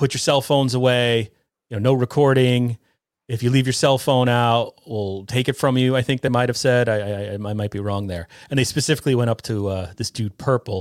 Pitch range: 110-140 Hz